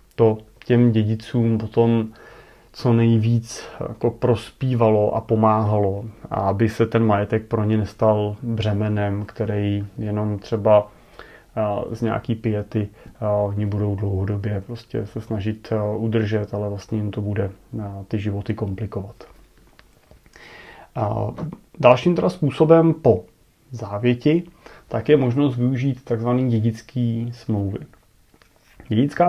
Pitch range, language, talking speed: 110-125 Hz, Czech, 105 wpm